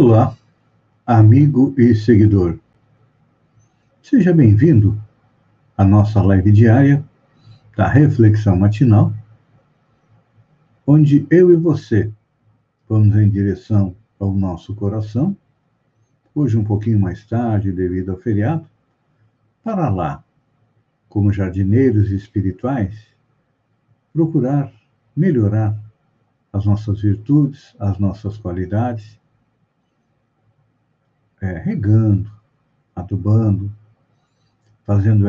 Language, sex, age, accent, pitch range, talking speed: Portuguese, male, 60-79, Brazilian, 105-135 Hz, 80 wpm